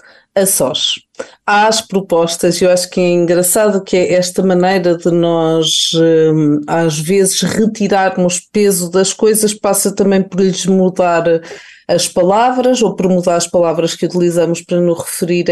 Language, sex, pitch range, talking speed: Portuguese, female, 185-230 Hz, 160 wpm